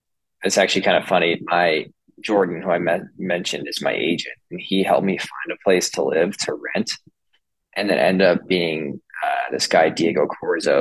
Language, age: English, 20-39